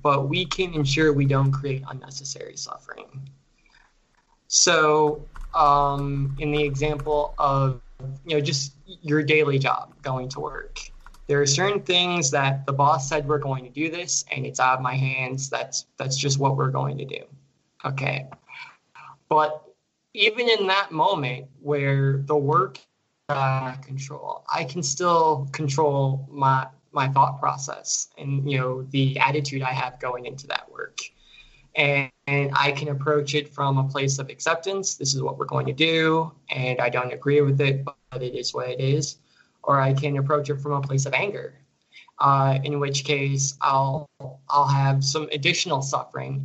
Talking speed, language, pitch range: 170 wpm, English, 135-150 Hz